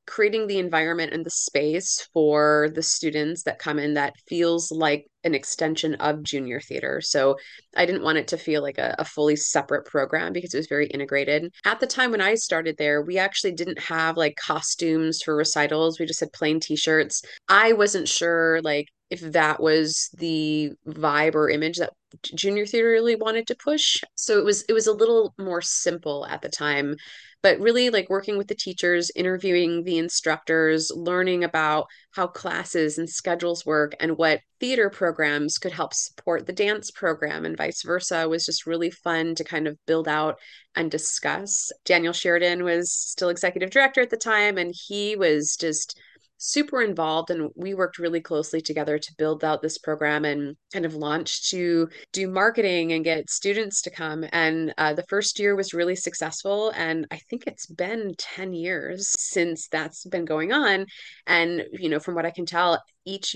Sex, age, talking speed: female, 20-39, 185 wpm